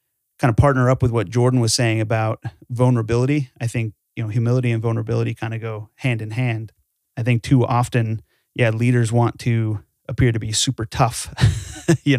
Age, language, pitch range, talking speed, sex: 30-49, English, 115-130 Hz, 185 wpm, male